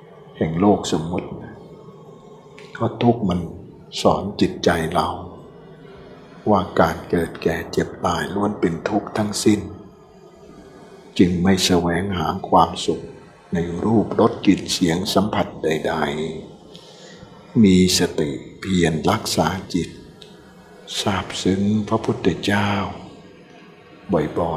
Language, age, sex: Thai, 60-79, male